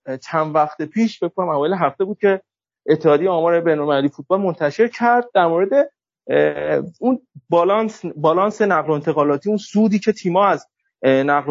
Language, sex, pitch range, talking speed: Persian, male, 175-240 Hz, 145 wpm